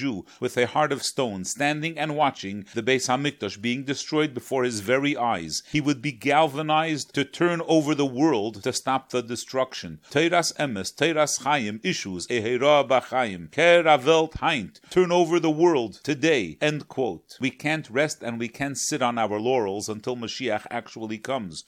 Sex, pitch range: male, 115-155 Hz